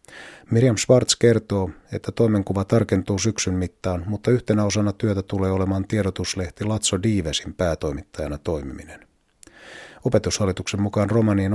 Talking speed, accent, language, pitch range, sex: 115 wpm, native, Finnish, 90-105 Hz, male